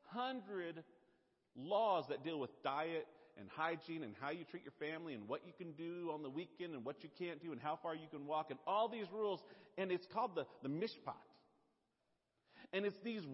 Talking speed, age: 205 wpm, 40-59